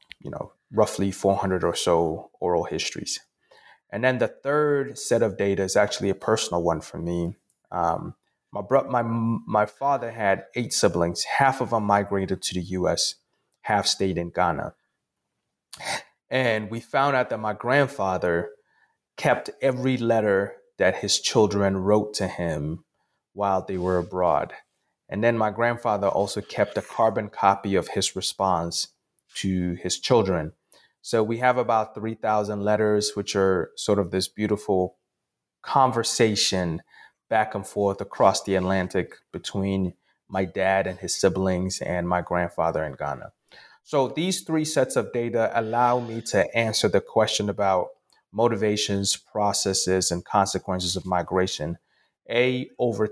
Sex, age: male, 30-49